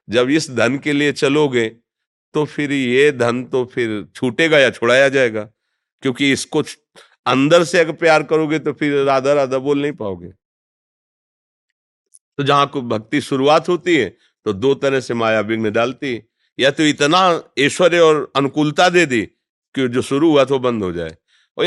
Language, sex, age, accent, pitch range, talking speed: Hindi, male, 50-69, native, 125-165 Hz, 170 wpm